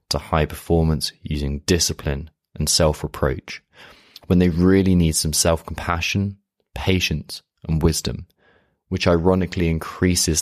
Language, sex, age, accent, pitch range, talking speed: English, male, 20-39, British, 75-90 Hz, 120 wpm